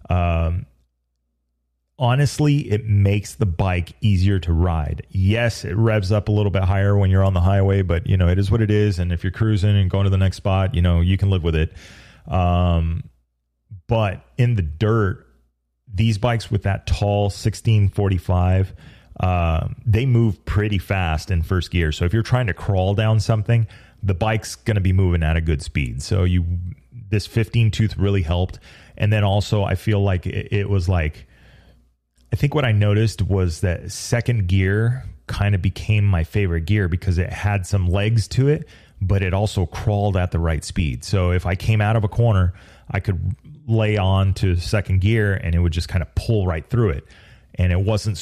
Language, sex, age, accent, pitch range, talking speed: English, male, 30-49, American, 90-105 Hz, 200 wpm